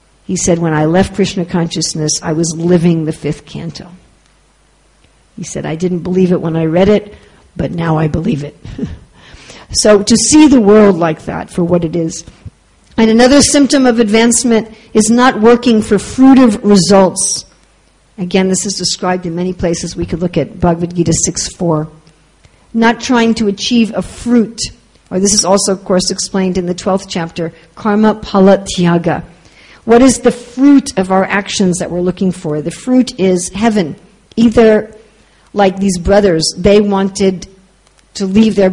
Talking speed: 165 wpm